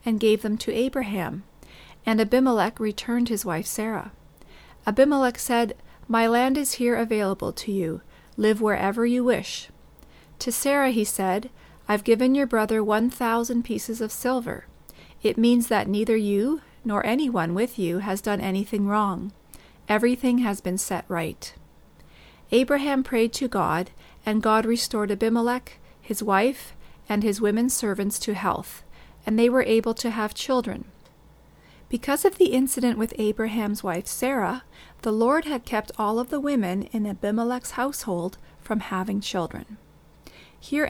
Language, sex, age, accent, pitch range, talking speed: English, female, 40-59, American, 205-245 Hz, 150 wpm